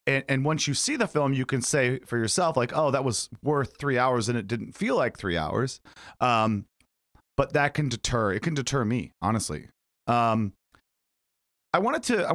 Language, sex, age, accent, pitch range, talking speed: English, male, 30-49, American, 110-145 Hz, 200 wpm